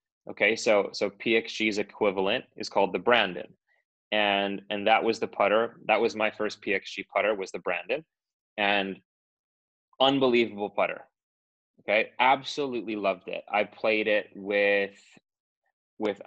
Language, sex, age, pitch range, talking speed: English, male, 20-39, 100-115 Hz, 135 wpm